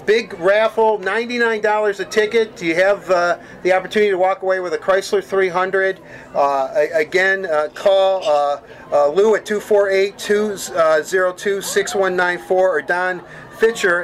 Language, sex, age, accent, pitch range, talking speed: English, male, 40-59, American, 170-205 Hz, 125 wpm